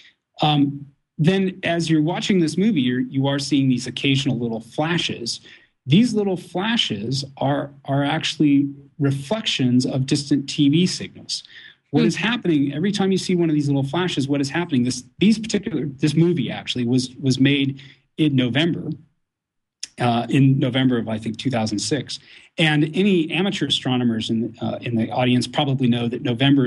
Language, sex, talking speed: English, male, 155 wpm